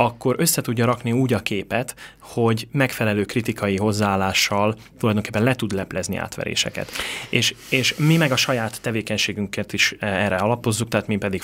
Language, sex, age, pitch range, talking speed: Hungarian, male, 30-49, 105-125 Hz, 145 wpm